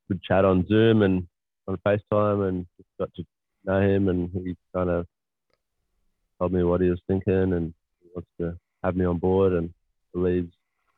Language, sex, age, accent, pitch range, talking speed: English, male, 20-39, Australian, 90-100 Hz, 170 wpm